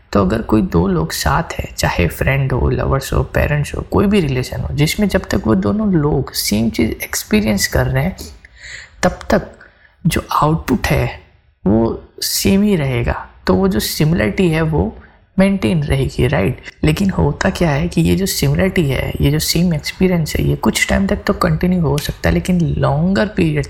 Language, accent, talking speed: Hindi, native, 185 wpm